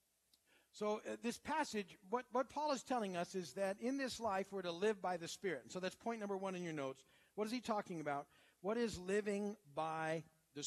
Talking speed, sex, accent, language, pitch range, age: 220 wpm, male, American, English, 175-230 Hz, 50-69